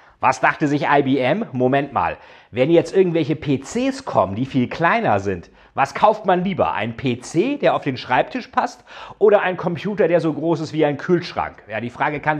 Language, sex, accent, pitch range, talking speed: German, male, German, 130-180 Hz, 195 wpm